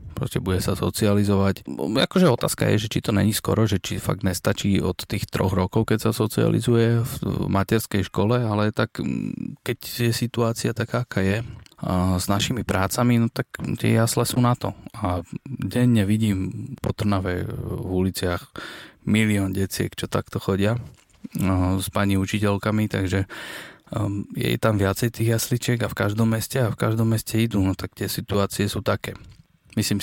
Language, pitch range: Slovak, 95-115 Hz